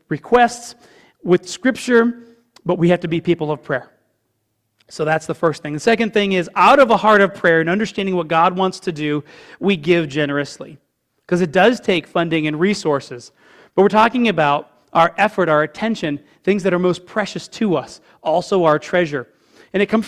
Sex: male